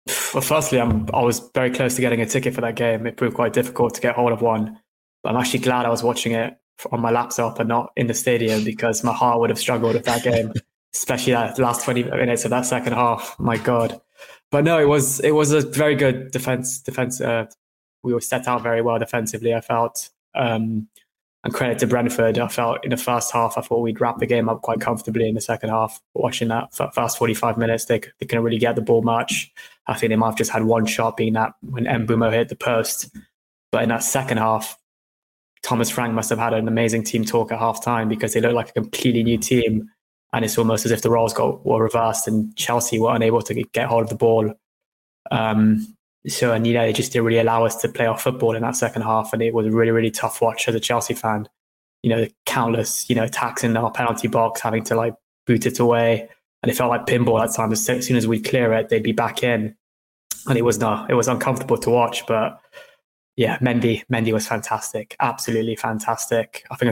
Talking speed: 235 wpm